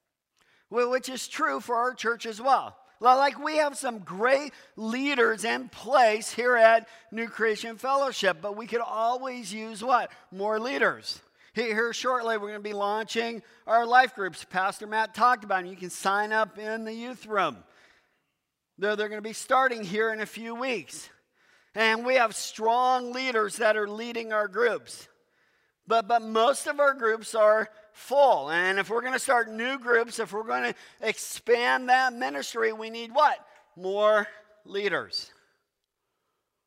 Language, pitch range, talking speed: English, 195-245 Hz, 160 wpm